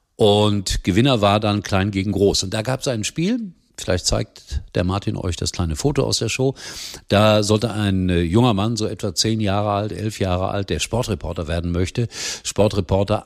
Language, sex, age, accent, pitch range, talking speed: German, male, 50-69, German, 90-110 Hz, 190 wpm